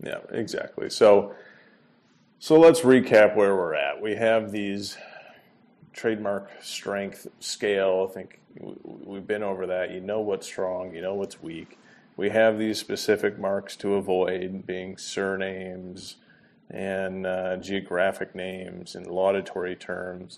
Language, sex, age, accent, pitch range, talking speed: English, male, 30-49, American, 95-105 Hz, 135 wpm